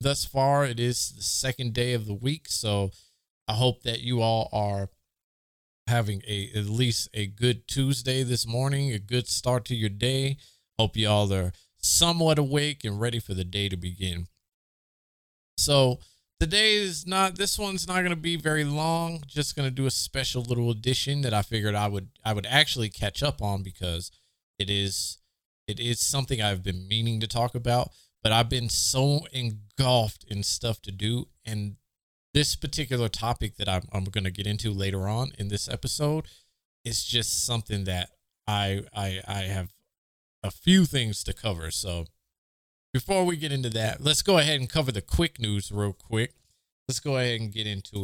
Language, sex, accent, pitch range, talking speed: English, male, American, 100-135 Hz, 185 wpm